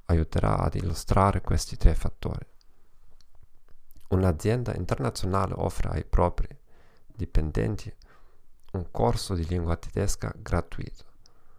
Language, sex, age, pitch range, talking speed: Italian, male, 40-59, 85-105 Hz, 95 wpm